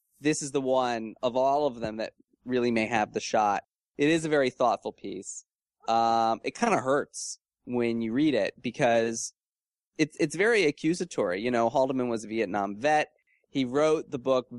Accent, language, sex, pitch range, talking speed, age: American, English, male, 110-150 Hz, 185 wpm, 20-39